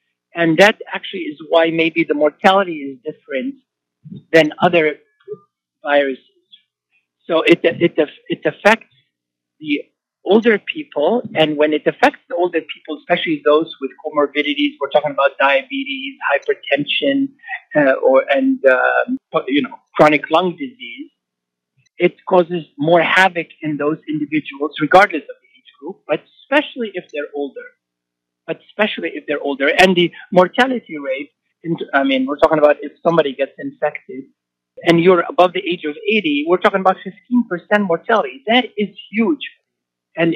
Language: Arabic